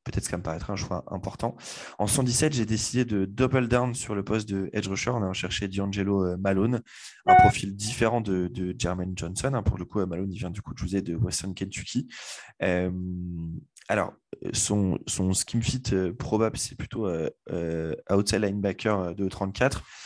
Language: French